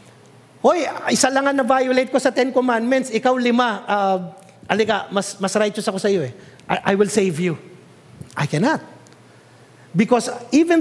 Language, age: English, 50-69